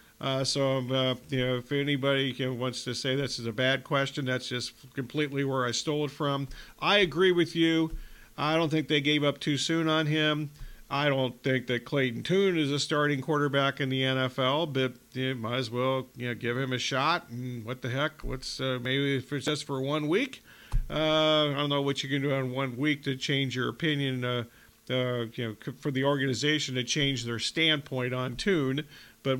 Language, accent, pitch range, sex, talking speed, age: English, American, 130-150 Hz, male, 215 wpm, 50-69